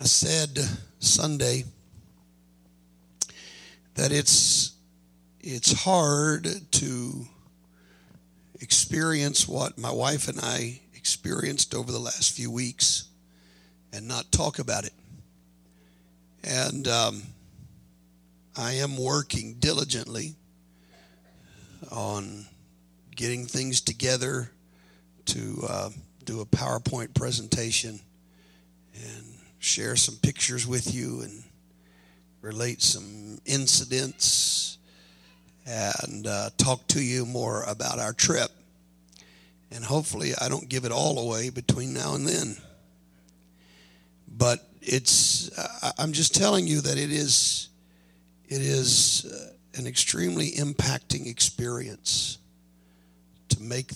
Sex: male